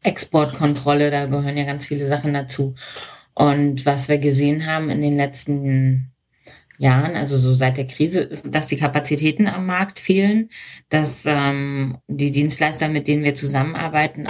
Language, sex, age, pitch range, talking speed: German, female, 20-39, 145-180 Hz, 155 wpm